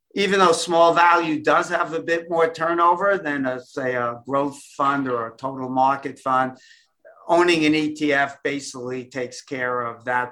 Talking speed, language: 170 wpm, English